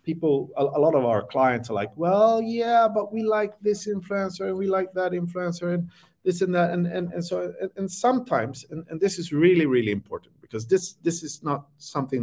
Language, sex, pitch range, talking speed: English, male, 135-185 Hz, 210 wpm